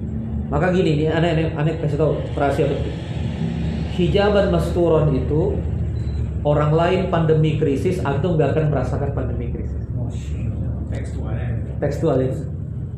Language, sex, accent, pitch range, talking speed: Indonesian, male, native, 135-180 Hz, 110 wpm